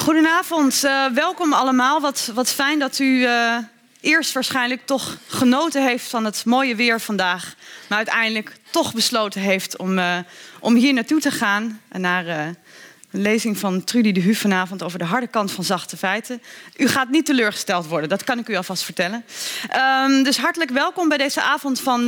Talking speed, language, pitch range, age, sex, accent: 180 wpm, Dutch, 200-260 Hz, 20-39, female, Dutch